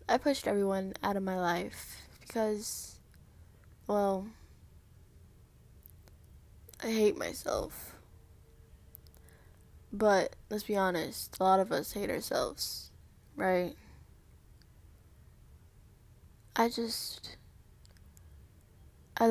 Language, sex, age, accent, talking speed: English, female, 10-29, American, 80 wpm